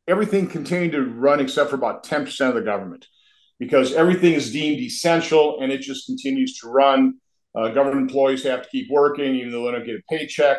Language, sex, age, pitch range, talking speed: English, male, 50-69, 130-165 Hz, 205 wpm